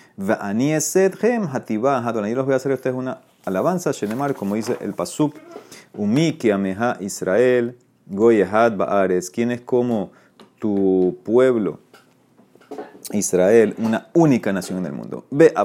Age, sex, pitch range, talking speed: 30-49, male, 100-130 Hz, 125 wpm